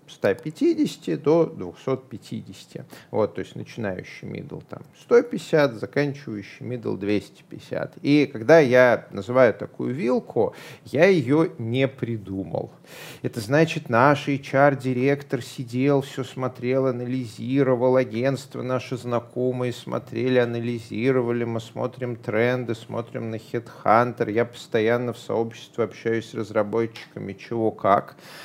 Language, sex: Russian, male